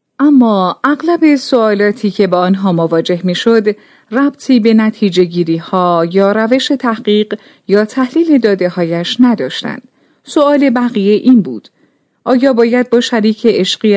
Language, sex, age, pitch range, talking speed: Persian, female, 40-59, 185-265 Hz, 130 wpm